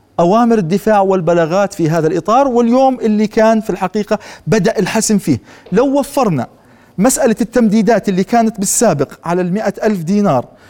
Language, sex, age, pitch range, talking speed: Arabic, male, 40-59, 180-225 Hz, 140 wpm